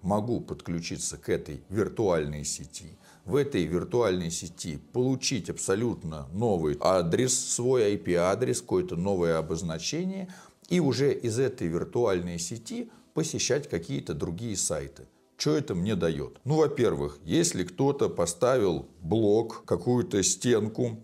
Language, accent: Russian, native